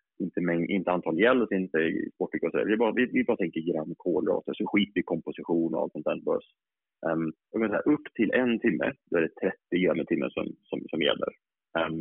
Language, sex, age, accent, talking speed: Swedish, male, 30-49, Norwegian, 205 wpm